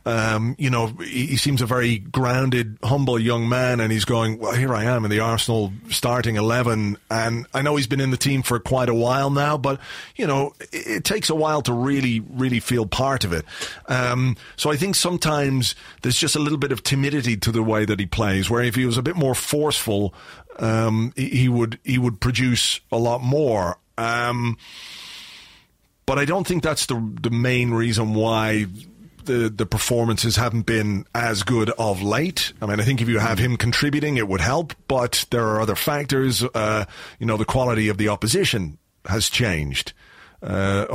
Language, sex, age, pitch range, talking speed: English, male, 30-49, 110-130 Hz, 200 wpm